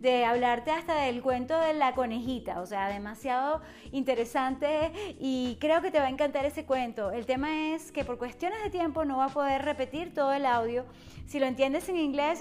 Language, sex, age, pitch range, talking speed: English, female, 30-49, 245-300 Hz, 205 wpm